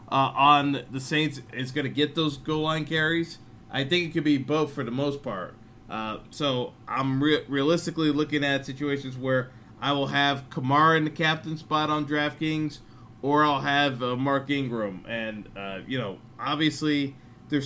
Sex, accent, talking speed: male, American, 175 wpm